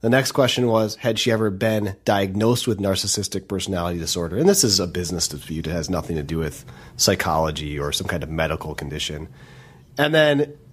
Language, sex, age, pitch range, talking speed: English, male, 30-49, 105-130 Hz, 190 wpm